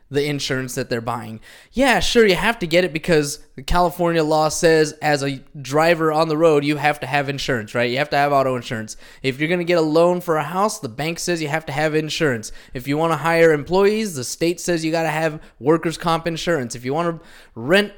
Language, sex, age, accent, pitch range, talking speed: English, male, 20-39, American, 145-185 Hz, 235 wpm